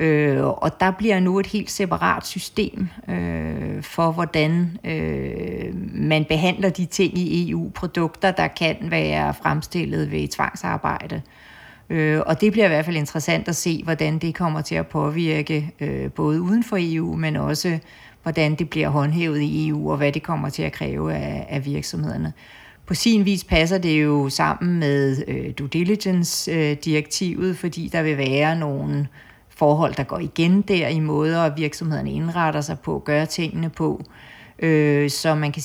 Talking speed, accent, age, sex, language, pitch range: 155 wpm, native, 40-59, female, Danish, 140-170 Hz